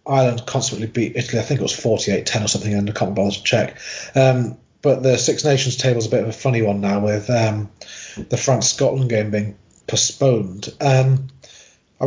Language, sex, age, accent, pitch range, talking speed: English, male, 30-49, British, 115-140 Hz, 200 wpm